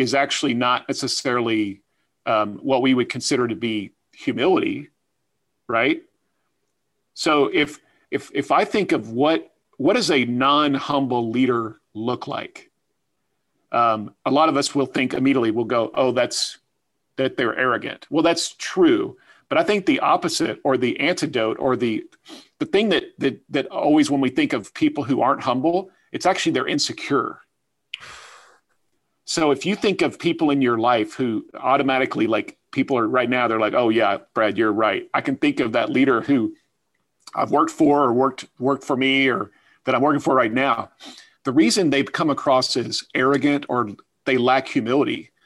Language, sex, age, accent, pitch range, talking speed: English, male, 40-59, American, 125-155 Hz, 170 wpm